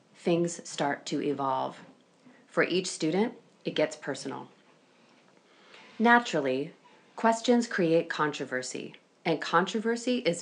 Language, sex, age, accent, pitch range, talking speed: English, female, 30-49, American, 150-220 Hz, 100 wpm